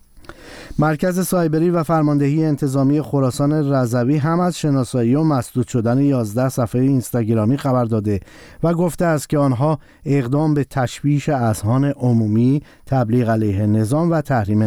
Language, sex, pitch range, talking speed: Persian, male, 120-150 Hz, 135 wpm